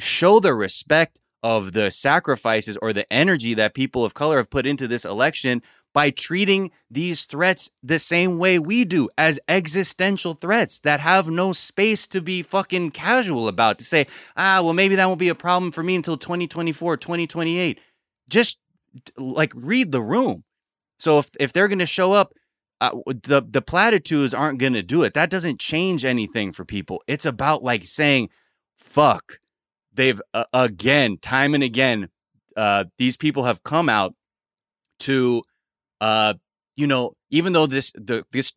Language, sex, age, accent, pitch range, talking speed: English, male, 20-39, American, 135-195 Hz, 170 wpm